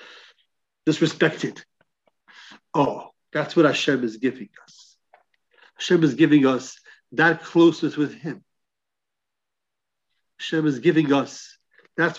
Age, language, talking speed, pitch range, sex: 50-69, English, 105 wpm, 155-205 Hz, male